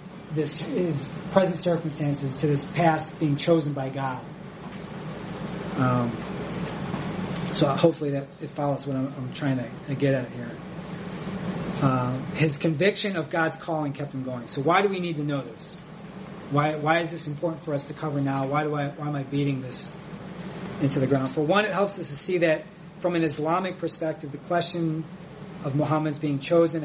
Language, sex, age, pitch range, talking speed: English, male, 30-49, 145-180 Hz, 185 wpm